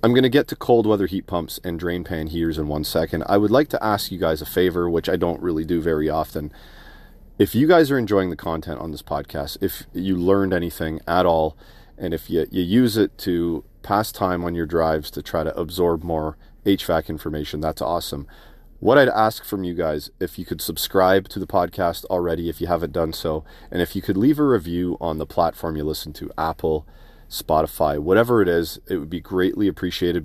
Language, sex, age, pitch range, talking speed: English, male, 30-49, 80-95 Hz, 220 wpm